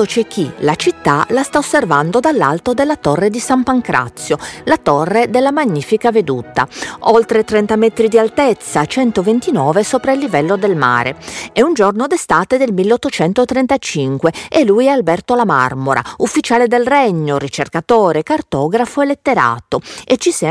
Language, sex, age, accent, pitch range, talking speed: Italian, female, 40-59, native, 165-255 Hz, 150 wpm